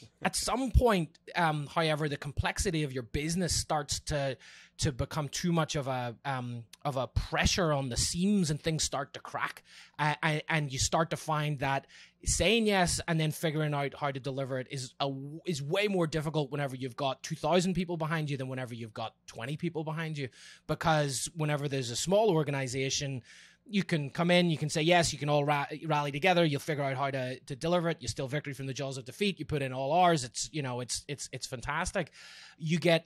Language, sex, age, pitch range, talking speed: English, male, 20-39, 135-165 Hz, 215 wpm